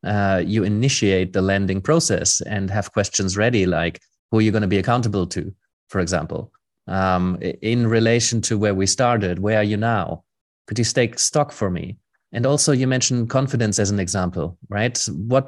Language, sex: English, male